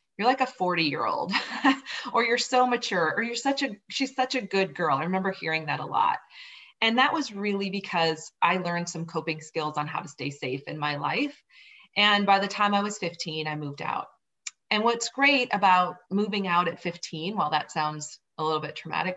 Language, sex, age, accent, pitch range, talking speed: English, female, 30-49, American, 160-210 Hz, 215 wpm